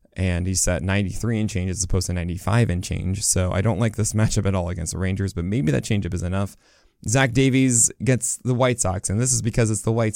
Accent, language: American, English